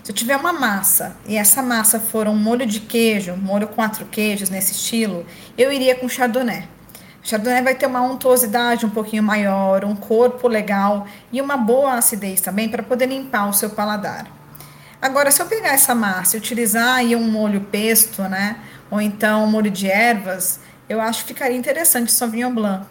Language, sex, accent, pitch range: Portuguese, female, Brazilian, 205-250 Hz